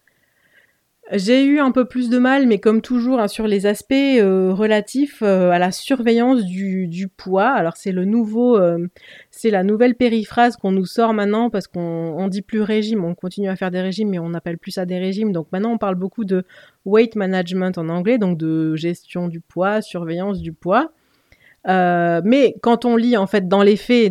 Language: French